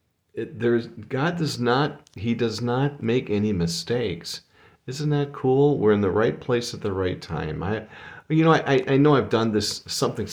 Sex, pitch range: male, 90-140 Hz